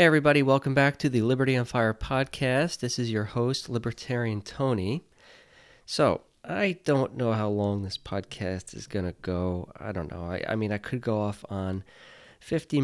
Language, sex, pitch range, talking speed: English, male, 105-135 Hz, 185 wpm